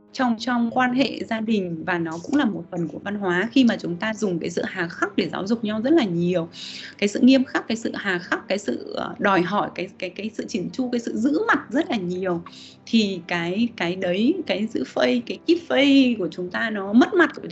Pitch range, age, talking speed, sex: 185-255 Hz, 20-39, 250 wpm, female